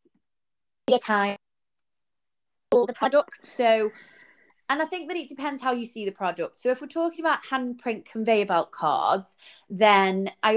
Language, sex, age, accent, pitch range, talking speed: English, female, 20-39, British, 185-235 Hz, 160 wpm